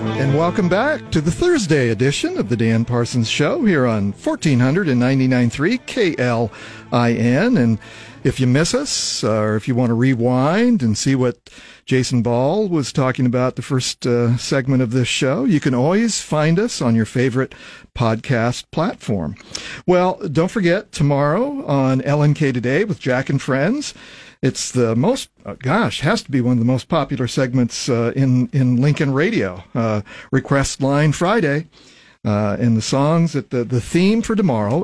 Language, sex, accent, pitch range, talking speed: English, male, American, 120-165 Hz, 165 wpm